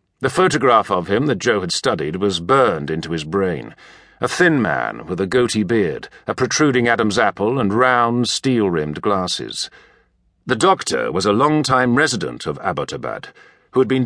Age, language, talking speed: 50-69, English, 160 wpm